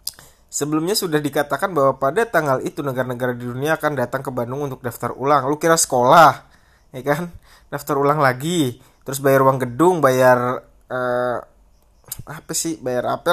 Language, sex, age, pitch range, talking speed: Indonesian, male, 20-39, 130-160 Hz, 160 wpm